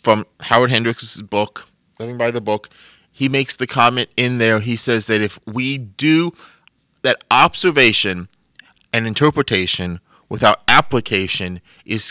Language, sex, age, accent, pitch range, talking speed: English, male, 30-49, American, 115-140 Hz, 135 wpm